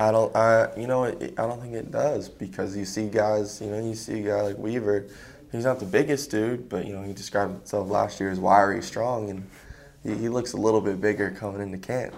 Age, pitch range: 20-39, 95-110 Hz